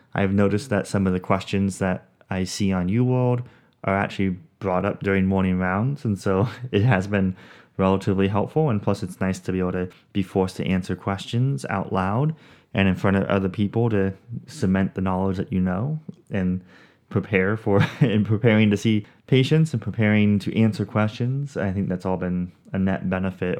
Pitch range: 90-105 Hz